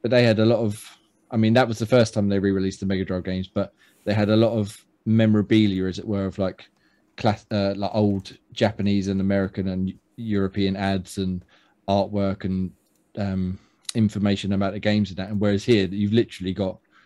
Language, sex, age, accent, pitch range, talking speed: English, male, 20-39, British, 100-115 Hz, 200 wpm